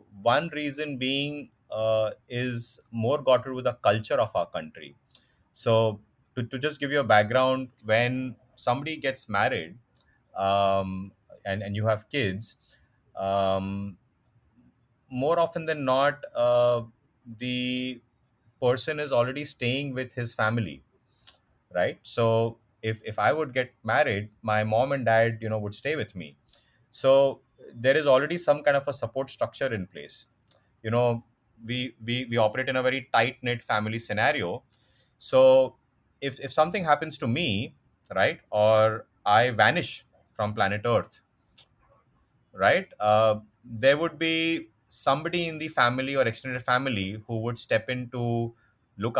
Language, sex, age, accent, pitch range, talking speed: English, male, 30-49, Indian, 110-135 Hz, 145 wpm